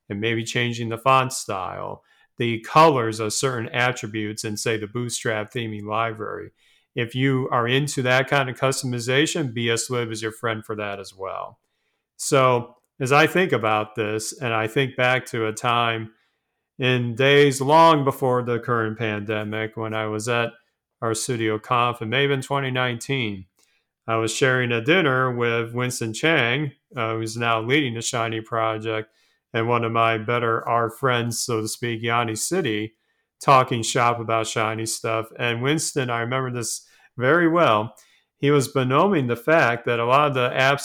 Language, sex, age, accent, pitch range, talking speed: English, male, 40-59, American, 115-135 Hz, 165 wpm